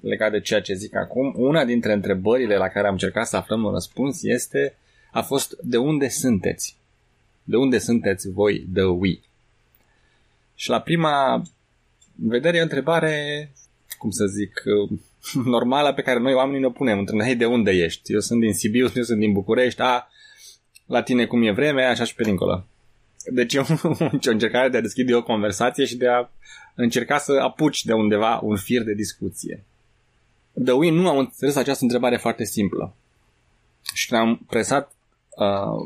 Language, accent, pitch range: Romanian, native, 105-125 Hz